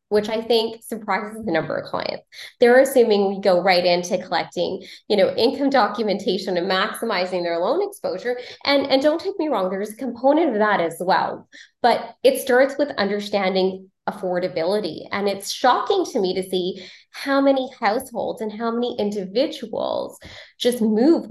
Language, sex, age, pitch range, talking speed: English, female, 20-39, 185-245 Hz, 165 wpm